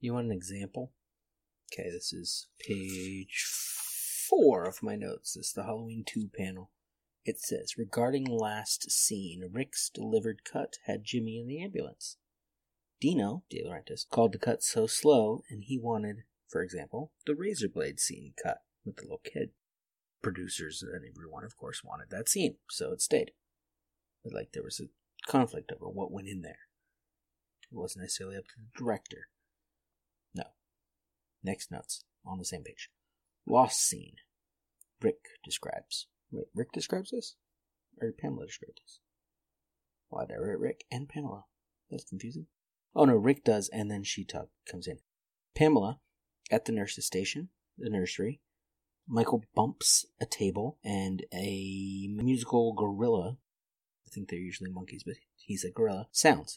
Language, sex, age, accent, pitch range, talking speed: English, male, 30-49, American, 95-135 Hz, 150 wpm